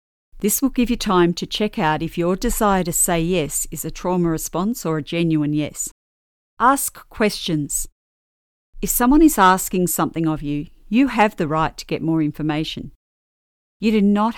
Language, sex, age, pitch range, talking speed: English, female, 50-69, 155-200 Hz, 175 wpm